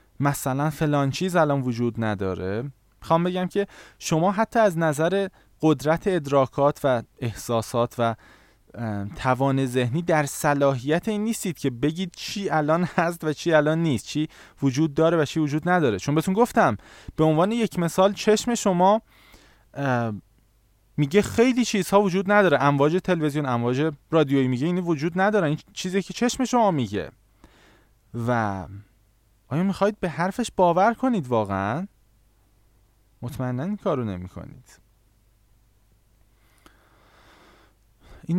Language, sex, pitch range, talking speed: Persian, male, 110-170 Hz, 125 wpm